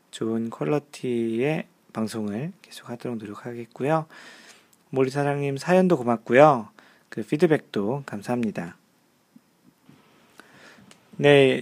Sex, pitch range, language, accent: male, 120-160 Hz, Korean, native